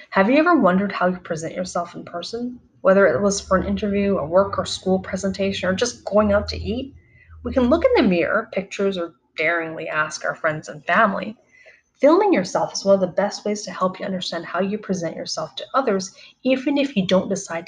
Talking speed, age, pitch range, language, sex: 215 wpm, 20-39, 180-230 Hz, English, female